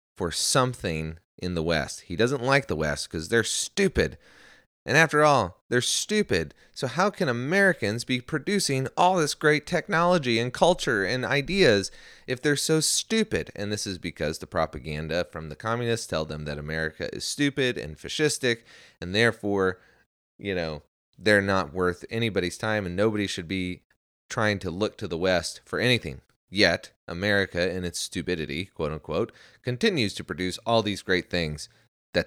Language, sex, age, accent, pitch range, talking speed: English, male, 30-49, American, 80-120 Hz, 165 wpm